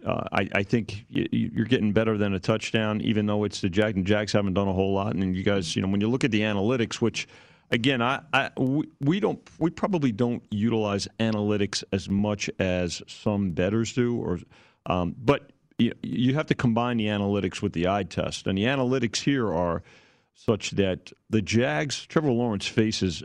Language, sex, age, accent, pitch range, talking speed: English, male, 40-59, American, 90-115 Hz, 195 wpm